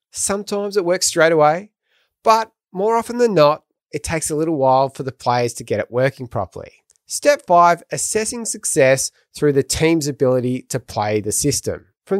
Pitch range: 130-195 Hz